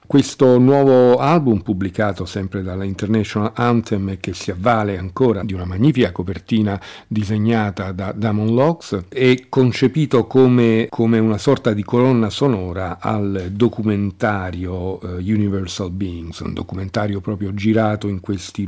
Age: 50-69